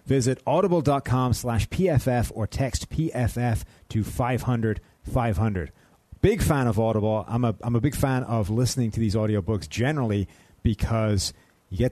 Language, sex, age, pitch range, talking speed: English, male, 30-49, 100-120 Hz, 145 wpm